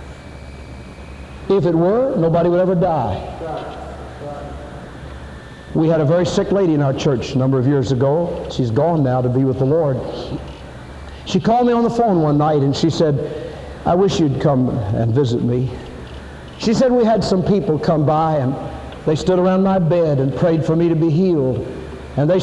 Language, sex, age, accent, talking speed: English, male, 60-79, American, 185 wpm